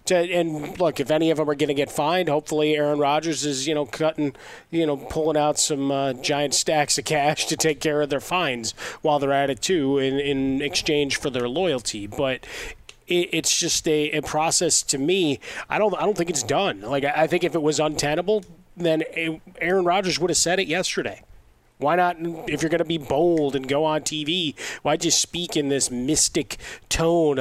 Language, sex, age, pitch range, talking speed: English, male, 30-49, 140-165 Hz, 210 wpm